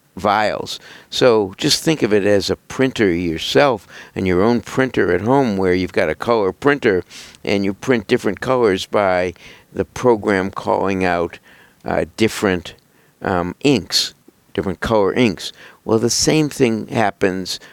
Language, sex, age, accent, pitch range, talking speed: English, male, 60-79, American, 90-105 Hz, 150 wpm